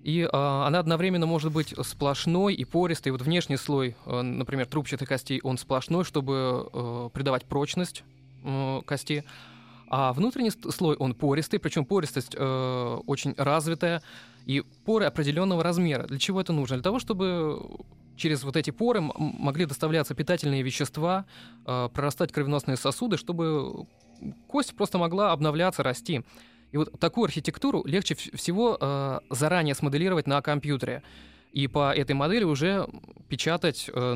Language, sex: Russian, male